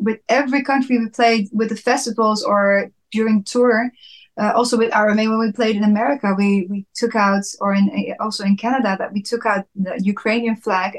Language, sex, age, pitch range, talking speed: English, female, 20-39, 205-235 Hz, 200 wpm